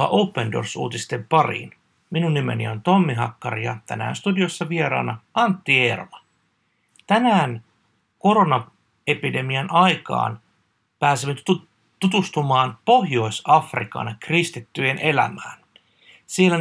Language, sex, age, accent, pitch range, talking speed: Finnish, male, 60-79, native, 120-170 Hz, 80 wpm